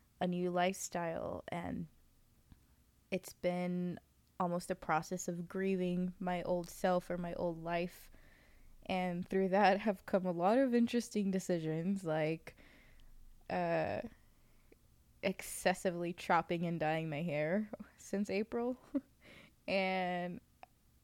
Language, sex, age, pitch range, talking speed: English, female, 20-39, 170-190 Hz, 110 wpm